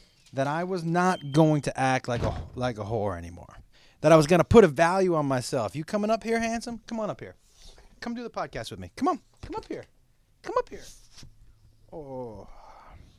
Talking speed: 215 wpm